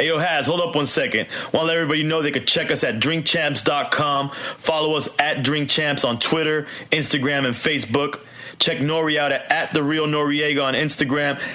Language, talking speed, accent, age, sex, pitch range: English, 190 wpm, American, 30-49, male, 140-160 Hz